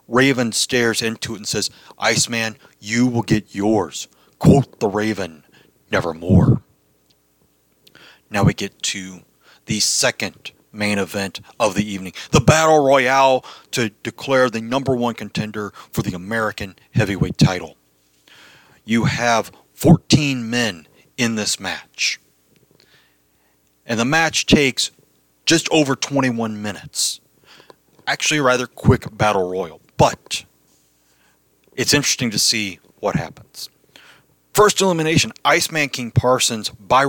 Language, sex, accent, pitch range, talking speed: English, male, American, 100-130 Hz, 120 wpm